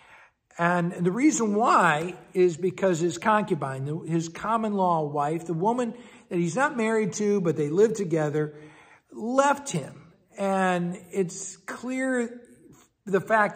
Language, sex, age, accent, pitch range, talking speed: English, male, 60-79, American, 155-215 Hz, 135 wpm